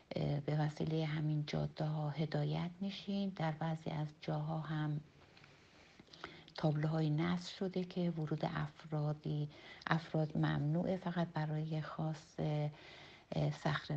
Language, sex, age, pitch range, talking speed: Persian, female, 60-79, 150-170 Hz, 105 wpm